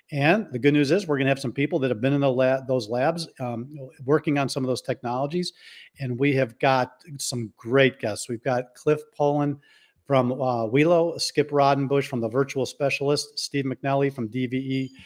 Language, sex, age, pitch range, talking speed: English, male, 50-69, 125-145 Hz, 200 wpm